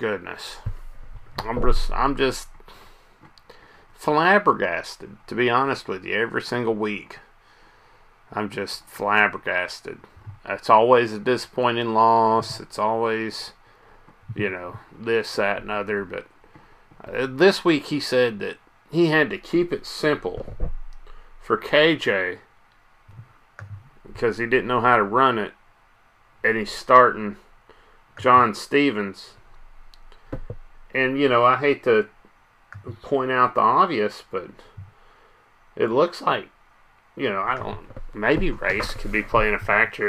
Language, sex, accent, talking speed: English, male, American, 125 wpm